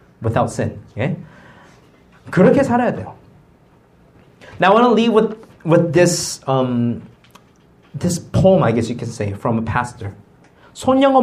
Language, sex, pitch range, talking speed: English, male, 115-180 Hz, 145 wpm